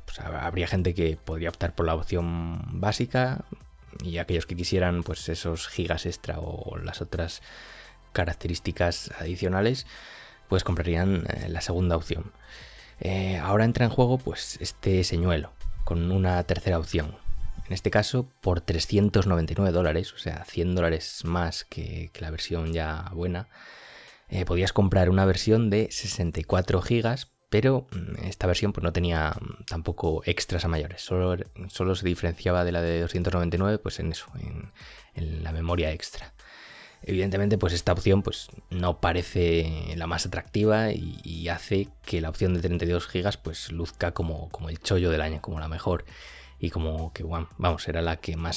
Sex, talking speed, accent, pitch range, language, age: male, 160 wpm, Spanish, 85-95 Hz, Spanish, 20-39